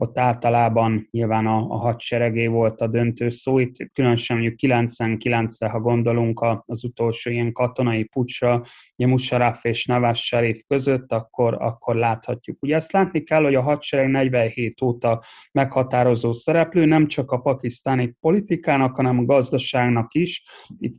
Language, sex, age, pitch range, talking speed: Hungarian, male, 30-49, 115-130 Hz, 145 wpm